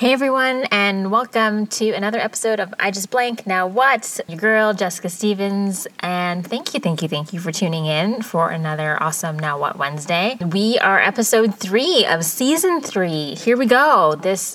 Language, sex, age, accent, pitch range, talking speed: English, female, 20-39, American, 165-205 Hz, 180 wpm